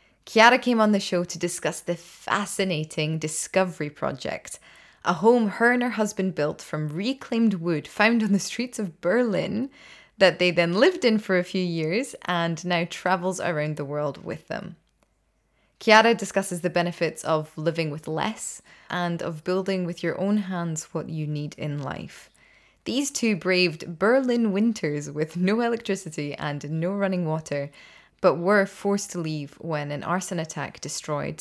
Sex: female